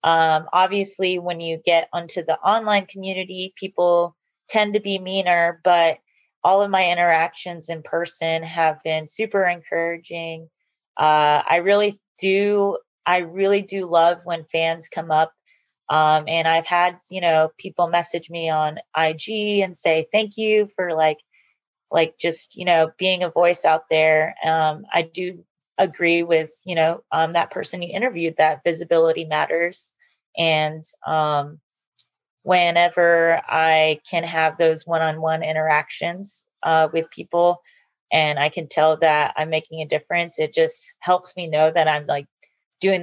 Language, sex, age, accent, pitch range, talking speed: English, female, 20-39, American, 160-180 Hz, 150 wpm